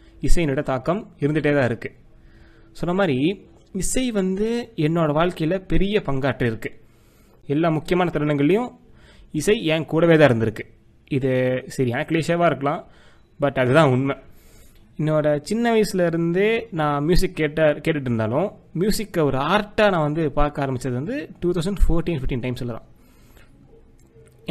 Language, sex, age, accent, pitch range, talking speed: Tamil, male, 30-49, native, 135-180 Hz, 125 wpm